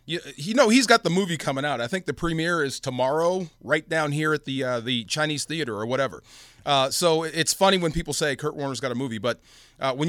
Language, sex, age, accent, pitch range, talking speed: English, male, 30-49, American, 135-180 Hz, 240 wpm